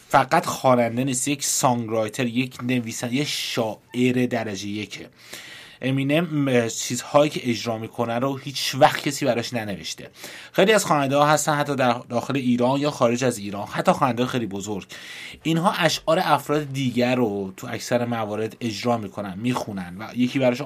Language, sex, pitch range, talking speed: Persian, male, 115-145 Hz, 150 wpm